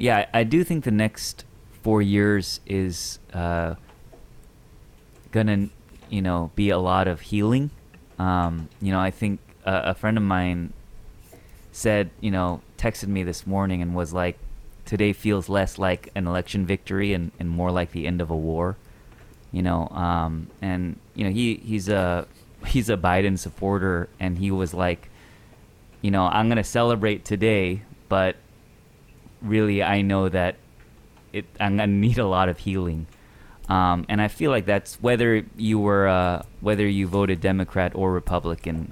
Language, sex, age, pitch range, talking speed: English, male, 30-49, 90-110 Hz, 165 wpm